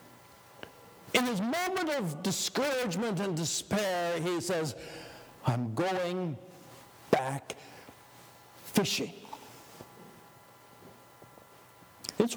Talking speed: 70 wpm